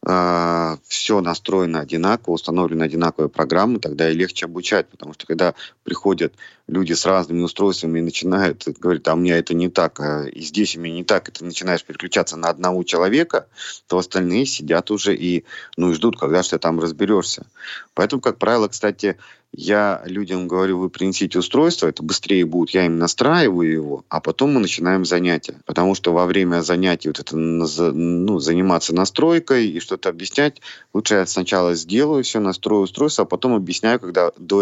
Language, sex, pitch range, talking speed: Russian, male, 85-100 Hz, 170 wpm